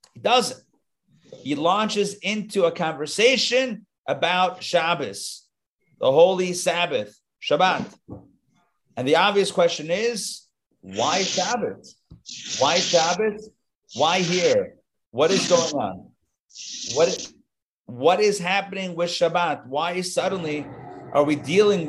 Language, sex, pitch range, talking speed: English, male, 155-210 Hz, 105 wpm